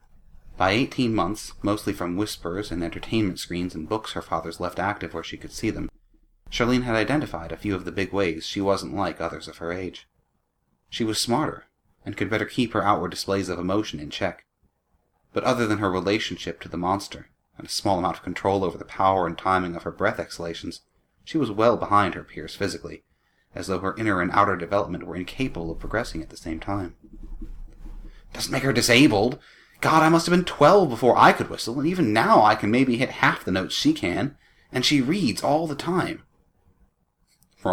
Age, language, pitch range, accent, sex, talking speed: 30-49, English, 90-125 Hz, American, male, 205 wpm